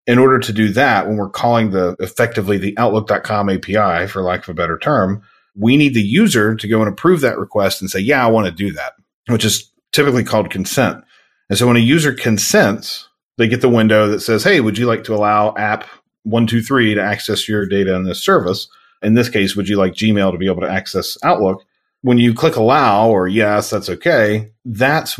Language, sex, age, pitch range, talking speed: English, male, 40-59, 95-115 Hz, 215 wpm